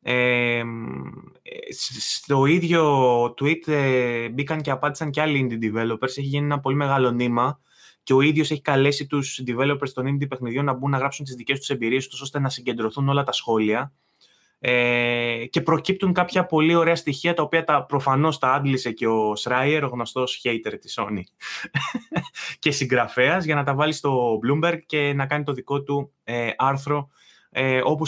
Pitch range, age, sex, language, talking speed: 125-150 Hz, 20-39, male, Greek, 170 wpm